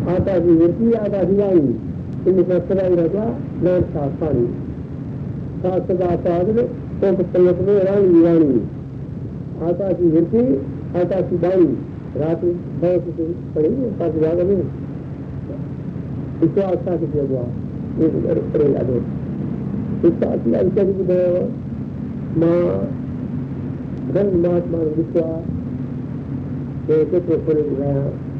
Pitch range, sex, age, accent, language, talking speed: 140-180 Hz, male, 60-79, native, Hindi, 125 wpm